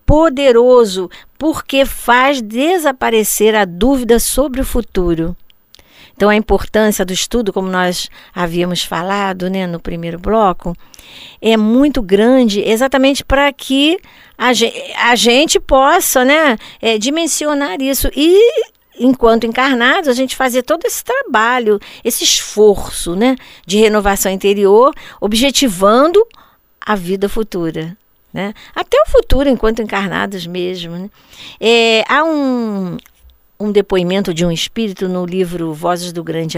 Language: Portuguese